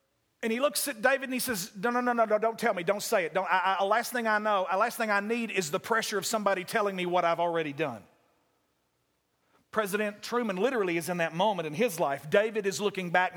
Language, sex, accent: English, male, American